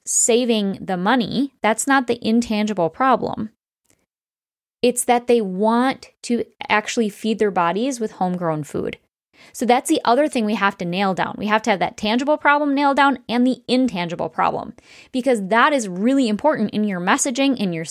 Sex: female